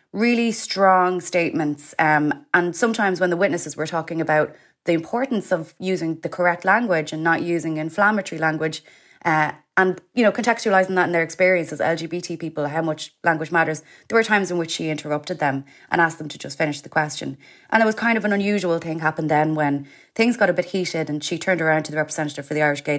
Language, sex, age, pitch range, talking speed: English, female, 20-39, 150-180 Hz, 215 wpm